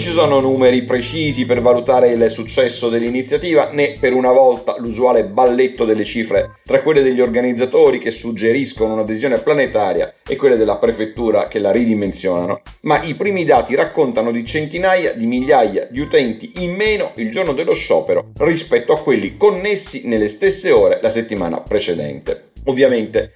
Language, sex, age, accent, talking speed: Italian, male, 40-59, native, 155 wpm